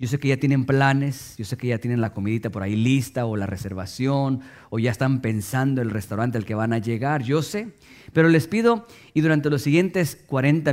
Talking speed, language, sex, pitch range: 225 wpm, English, male, 115-145 Hz